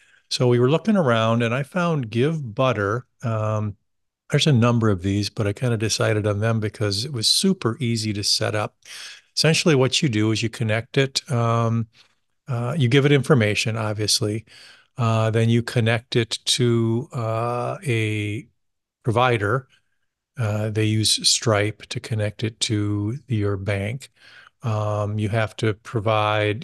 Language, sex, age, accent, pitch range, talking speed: English, male, 50-69, American, 105-125 Hz, 155 wpm